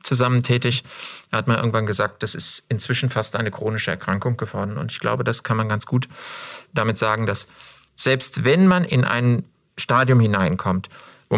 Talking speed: 180 wpm